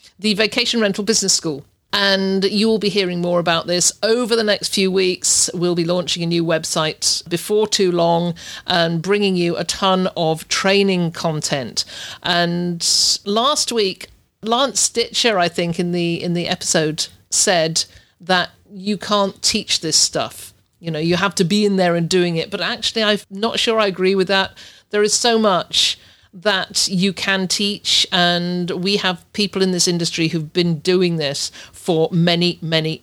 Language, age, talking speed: English, 50-69, 170 wpm